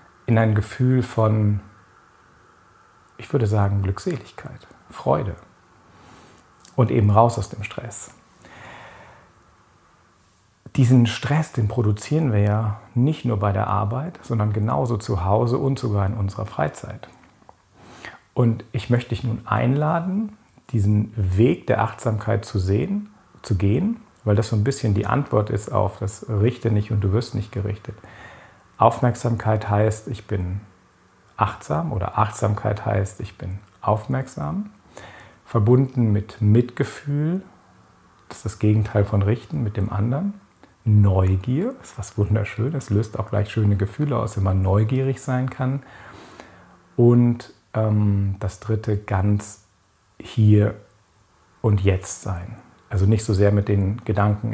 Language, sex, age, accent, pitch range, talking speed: German, male, 40-59, German, 100-120 Hz, 135 wpm